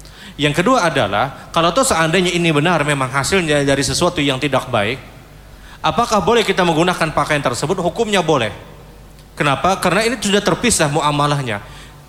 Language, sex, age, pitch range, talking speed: Indonesian, male, 30-49, 145-190 Hz, 145 wpm